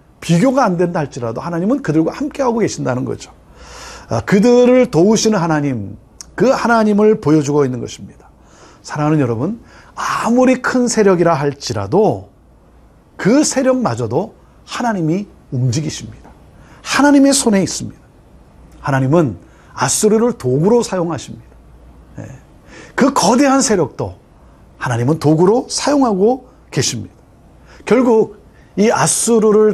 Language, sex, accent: Korean, male, native